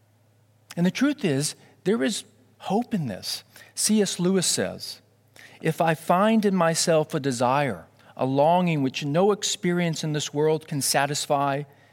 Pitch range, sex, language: 115-175 Hz, male, English